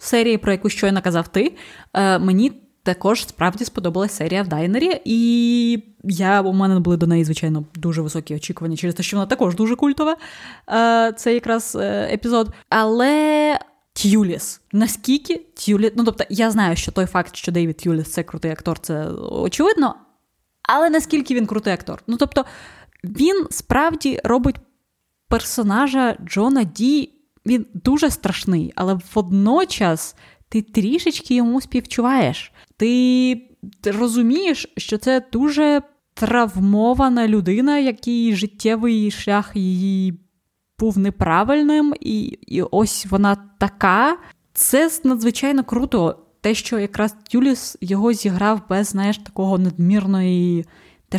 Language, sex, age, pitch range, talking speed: Ukrainian, female, 20-39, 190-255 Hz, 125 wpm